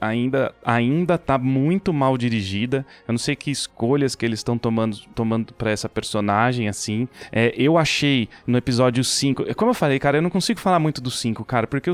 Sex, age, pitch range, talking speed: male, 20-39, 120-155 Hz, 195 wpm